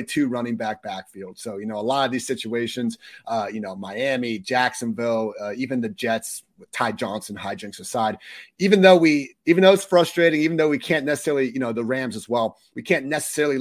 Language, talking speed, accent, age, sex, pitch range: English, 205 wpm, American, 30-49, male, 115-150 Hz